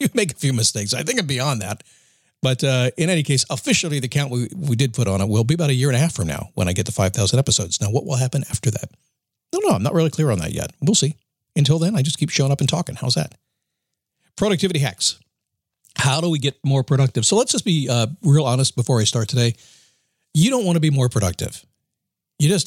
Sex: male